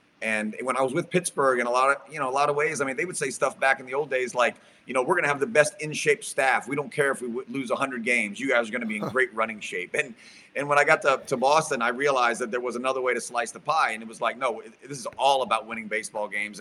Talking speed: 330 wpm